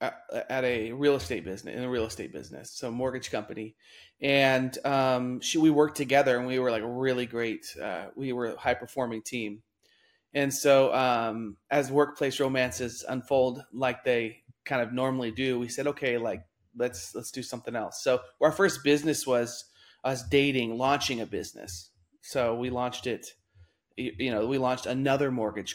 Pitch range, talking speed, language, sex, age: 115-140 Hz, 170 wpm, English, male, 30-49